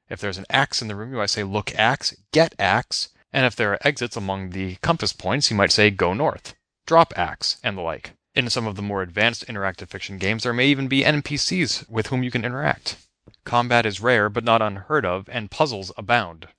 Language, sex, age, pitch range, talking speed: English, male, 30-49, 105-135 Hz, 225 wpm